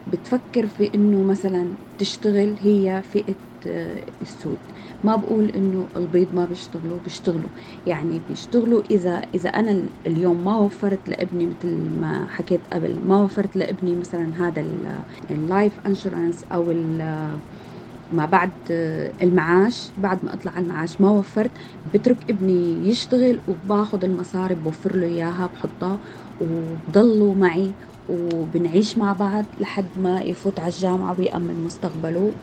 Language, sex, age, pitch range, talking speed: Arabic, female, 20-39, 175-210 Hz, 120 wpm